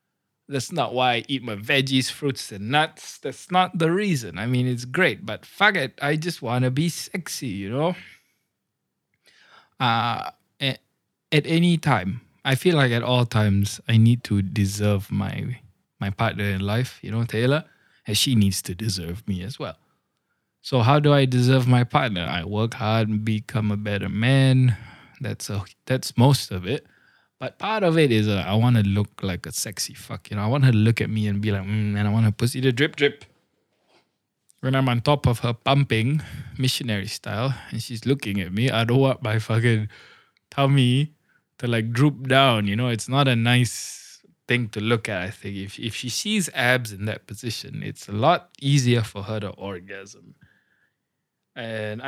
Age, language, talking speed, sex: 20-39, English, 190 wpm, male